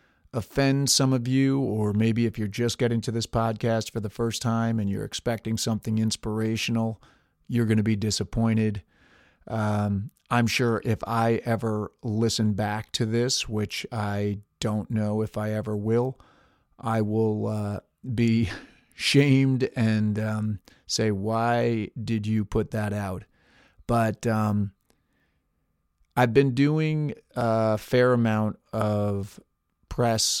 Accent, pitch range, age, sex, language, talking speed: American, 105-115 Hz, 40-59, male, English, 135 wpm